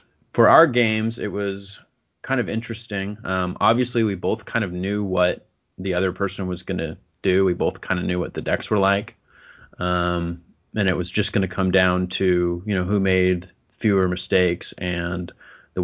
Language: English